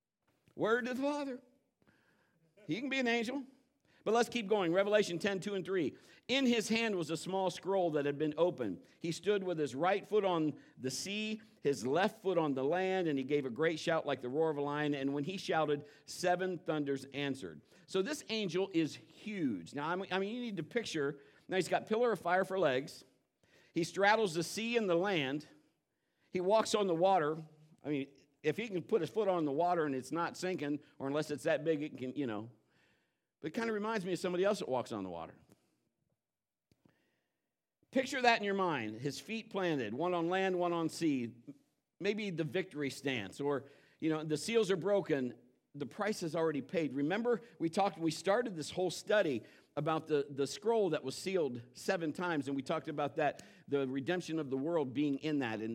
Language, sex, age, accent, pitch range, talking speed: English, male, 50-69, American, 145-200 Hz, 210 wpm